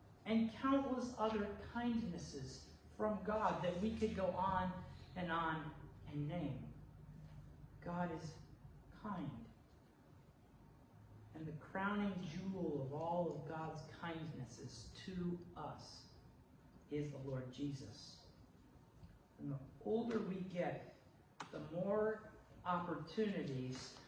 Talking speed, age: 100 wpm, 40-59